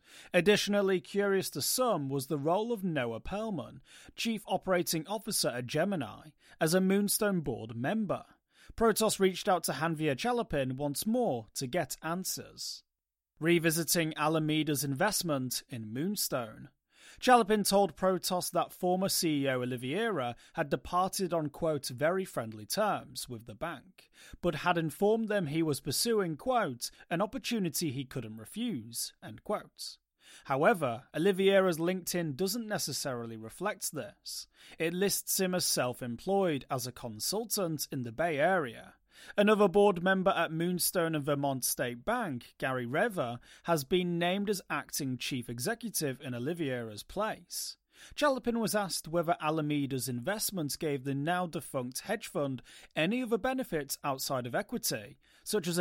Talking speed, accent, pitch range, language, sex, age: 135 wpm, British, 140-195 Hz, English, male, 30-49